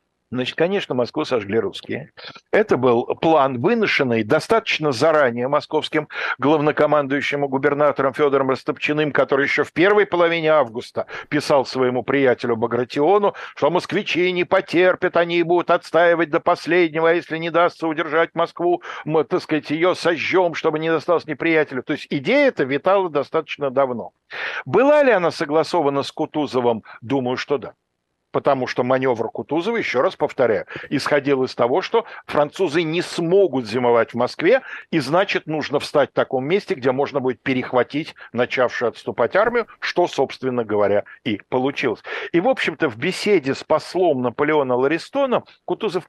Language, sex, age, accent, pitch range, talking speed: Russian, male, 60-79, native, 130-180 Hz, 145 wpm